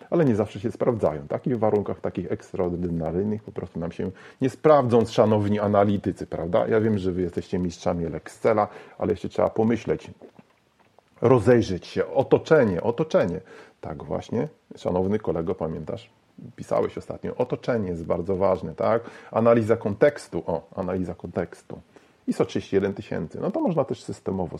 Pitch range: 100-125 Hz